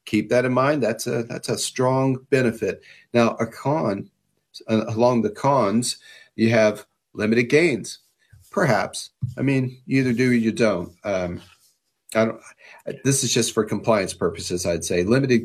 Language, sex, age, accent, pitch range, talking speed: English, male, 40-59, American, 110-130 Hz, 155 wpm